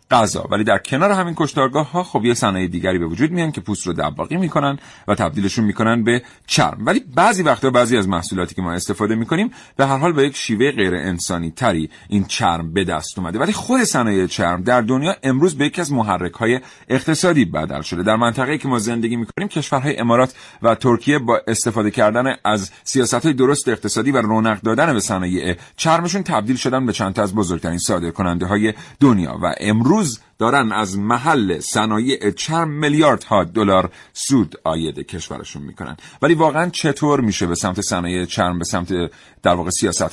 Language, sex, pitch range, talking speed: Persian, male, 95-140 Hz, 180 wpm